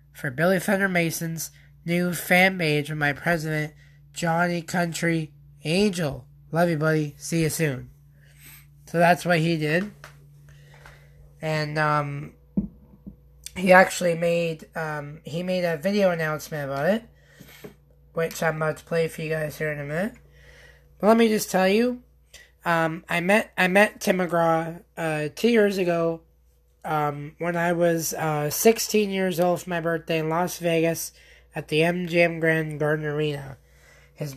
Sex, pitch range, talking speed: male, 145-175 Hz, 150 wpm